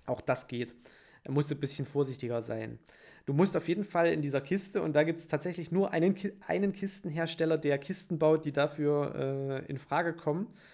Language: German